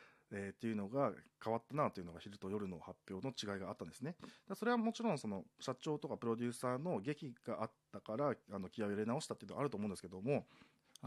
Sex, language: male, Japanese